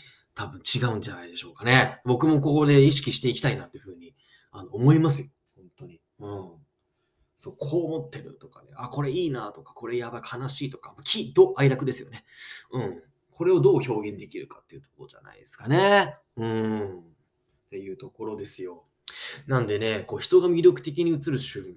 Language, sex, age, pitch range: Japanese, male, 20-39, 125-165 Hz